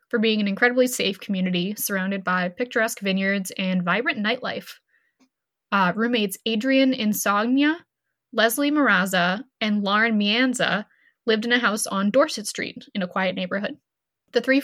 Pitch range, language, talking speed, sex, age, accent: 195-240 Hz, English, 145 wpm, female, 10-29, American